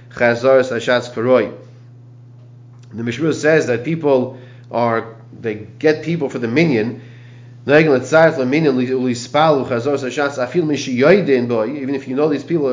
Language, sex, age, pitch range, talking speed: English, male, 30-49, 120-145 Hz, 85 wpm